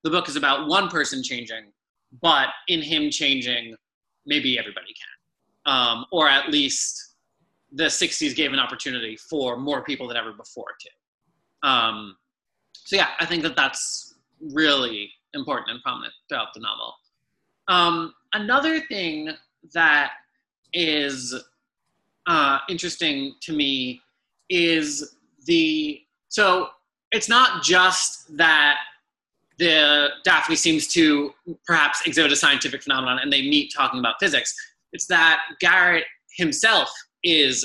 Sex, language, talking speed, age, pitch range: male, English, 130 wpm, 20-39, 145-235 Hz